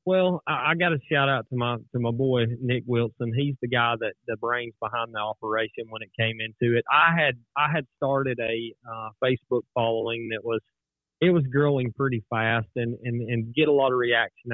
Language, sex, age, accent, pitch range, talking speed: English, male, 30-49, American, 115-135 Hz, 215 wpm